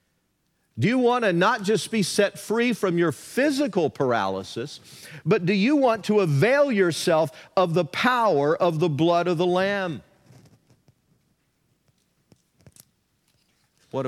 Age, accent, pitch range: 50-69, American, 120-185 Hz